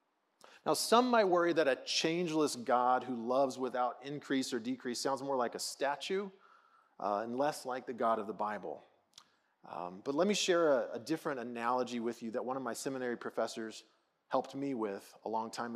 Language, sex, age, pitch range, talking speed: English, male, 30-49, 120-150 Hz, 195 wpm